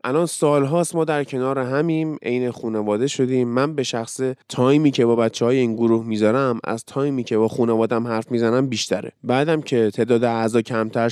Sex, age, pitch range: male, 20-39, 115-145 Hz